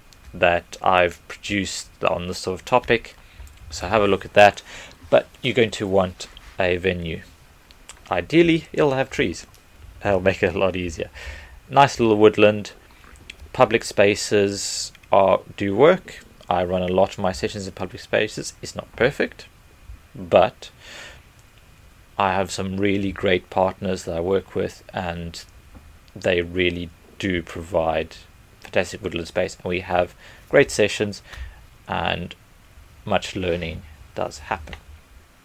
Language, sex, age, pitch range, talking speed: English, male, 30-49, 85-100 Hz, 135 wpm